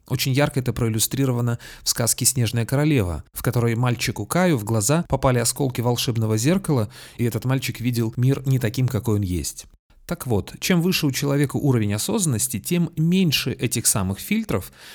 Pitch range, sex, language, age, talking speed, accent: 110-150 Hz, male, Russian, 30-49, 165 wpm, native